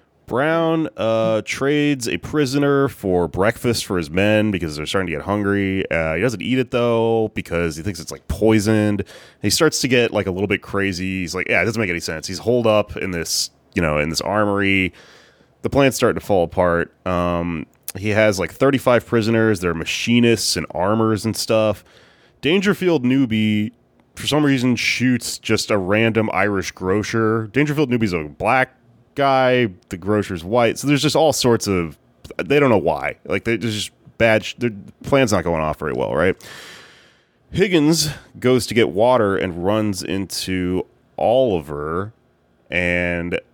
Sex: male